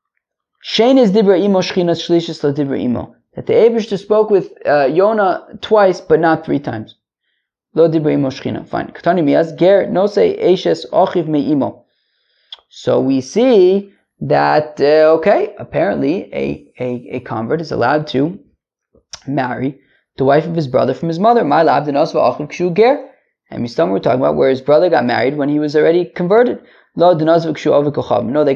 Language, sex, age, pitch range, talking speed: English, male, 20-39, 140-180 Hz, 145 wpm